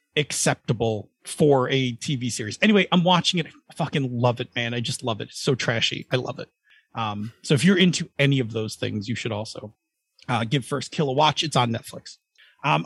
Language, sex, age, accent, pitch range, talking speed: English, male, 40-59, American, 125-155 Hz, 215 wpm